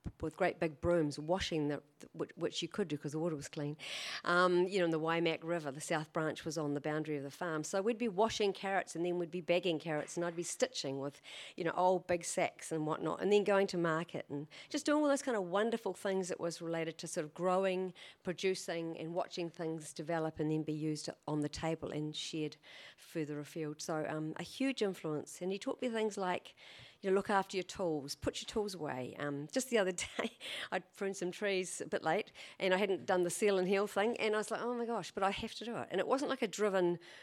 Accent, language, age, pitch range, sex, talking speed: Australian, English, 50-69, 160-195 Hz, female, 250 wpm